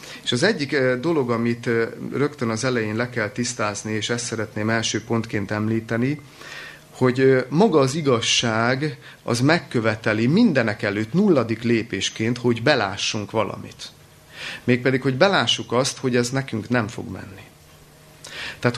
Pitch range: 110-135 Hz